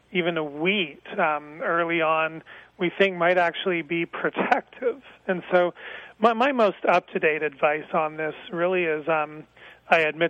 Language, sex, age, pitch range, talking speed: English, male, 40-59, 155-185 Hz, 150 wpm